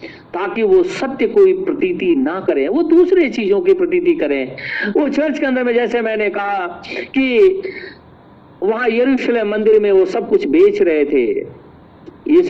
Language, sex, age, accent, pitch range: Hindi, male, 50-69, native, 220-360 Hz